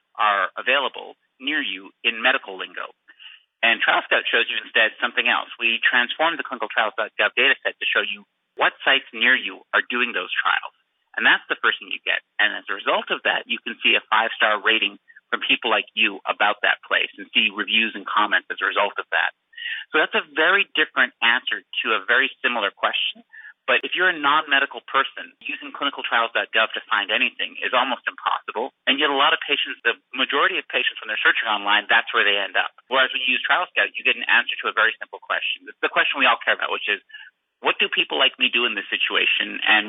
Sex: male